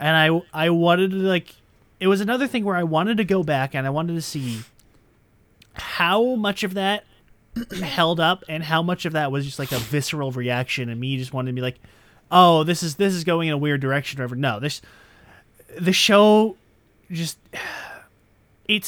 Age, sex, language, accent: 20-39, male, English, American